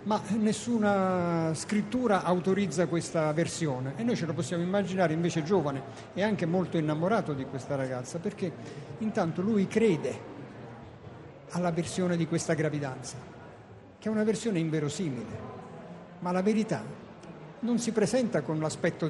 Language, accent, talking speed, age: Italian, native, 135 wpm, 50-69